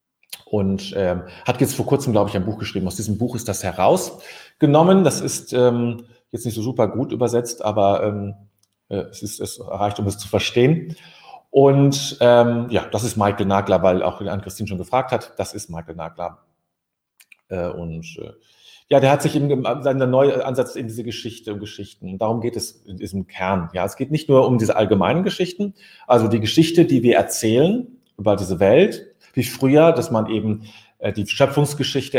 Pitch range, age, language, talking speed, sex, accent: 105-145 Hz, 40-59, German, 190 wpm, male, German